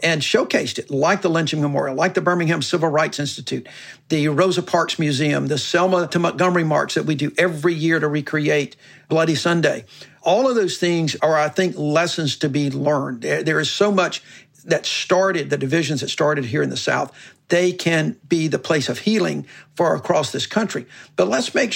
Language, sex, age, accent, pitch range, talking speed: English, male, 50-69, American, 150-180 Hz, 195 wpm